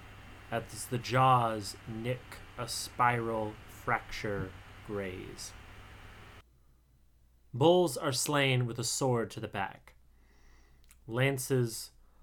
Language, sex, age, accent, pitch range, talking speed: English, male, 30-49, American, 100-115 Hz, 90 wpm